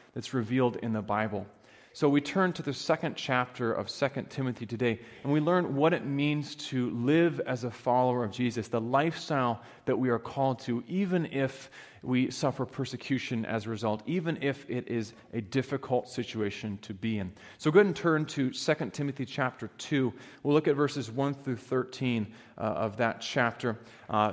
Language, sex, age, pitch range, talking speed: English, male, 30-49, 115-150 Hz, 185 wpm